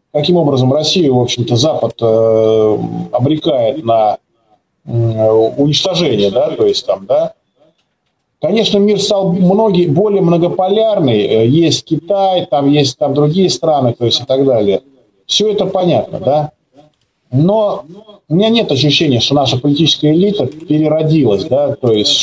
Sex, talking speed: male, 140 wpm